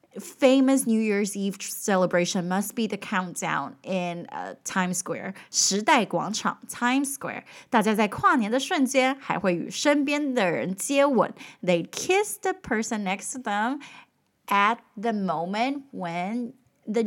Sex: female